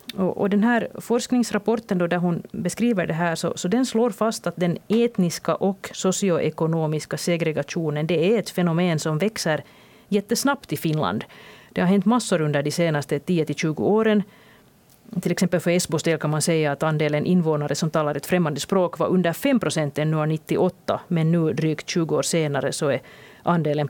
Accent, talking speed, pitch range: Finnish, 175 wpm, 155-210 Hz